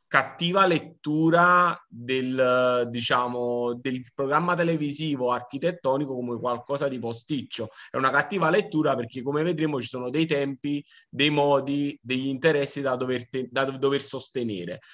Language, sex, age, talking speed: Italian, male, 30-49, 135 wpm